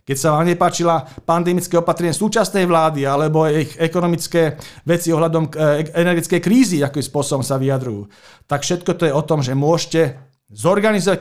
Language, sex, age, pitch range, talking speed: Slovak, male, 40-59, 145-180 Hz, 150 wpm